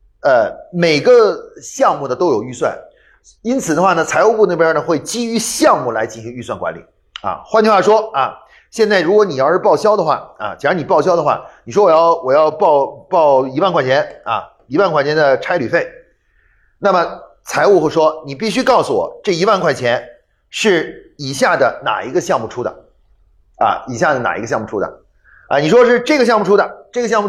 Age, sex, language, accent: 30-49, male, Chinese, native